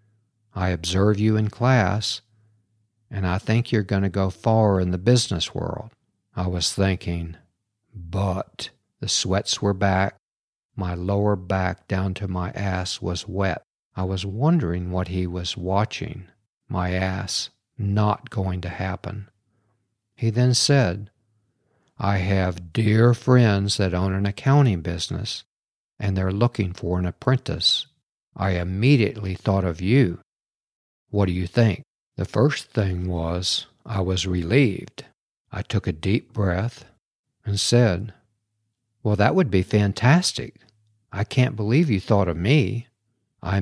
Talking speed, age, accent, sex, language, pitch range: 140 wpm, 50-69, American, male, English, 95-115 Hz